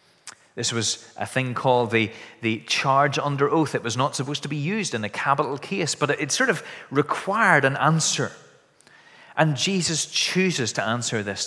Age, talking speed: 30-49, 185 wpm